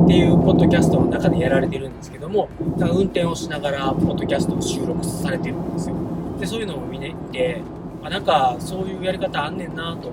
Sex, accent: male, native